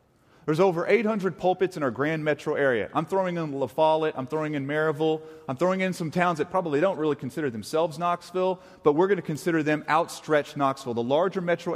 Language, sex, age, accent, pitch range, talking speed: English, male, 30-49, American, 140-190 Hz, 210 wpm